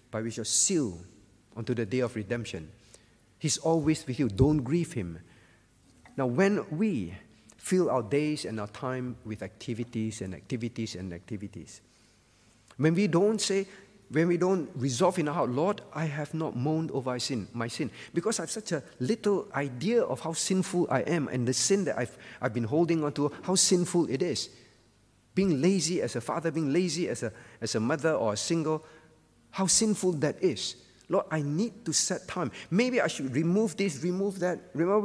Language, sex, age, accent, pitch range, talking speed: English, male, 50-69, Malaysian, 115-175 Hz, 190 wpm